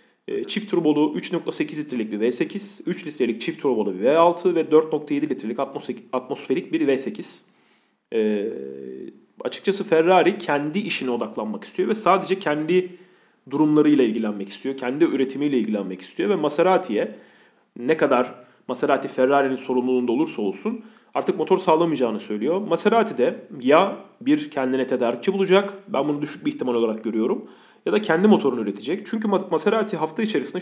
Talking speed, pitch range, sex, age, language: 135 wpm, 125-195 Hz, male, 40-59, Turkish